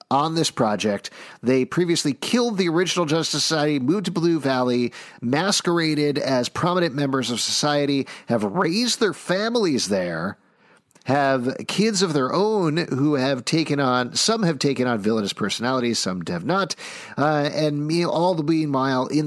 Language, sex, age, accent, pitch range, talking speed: English, male, 40-59, American, 130-180 Hz, 145 wpm